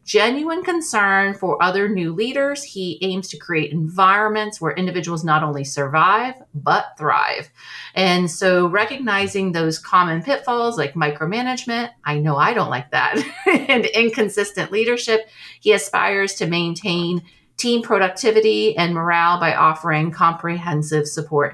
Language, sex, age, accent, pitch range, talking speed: English, female, 40-59, American, 165-215 Hz, 130 wpm